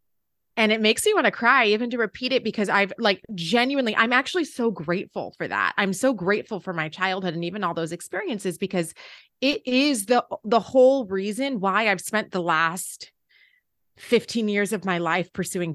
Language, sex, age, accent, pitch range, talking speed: English, female, 30-49, American, 175-240 Hz, 190 wpm